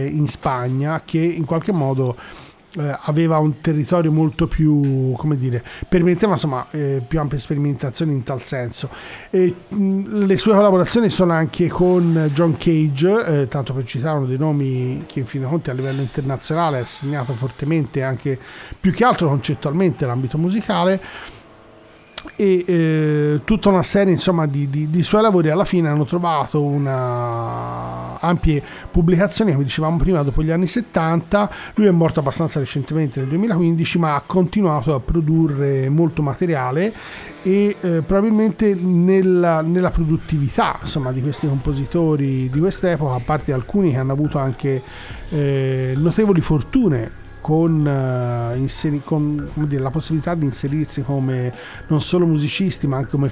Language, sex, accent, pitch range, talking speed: Italian, male, native, 140-175 Hz, 145 wpm